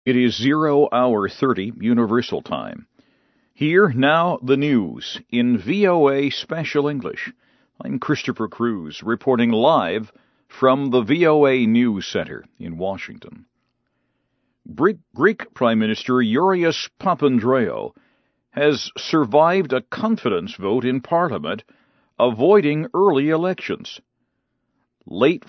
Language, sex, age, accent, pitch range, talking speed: English, male, 50-69, American, 125-180 Hz, 100 wpm